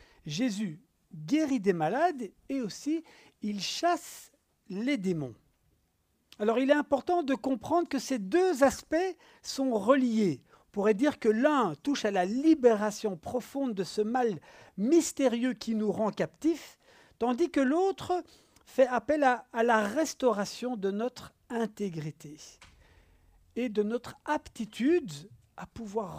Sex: male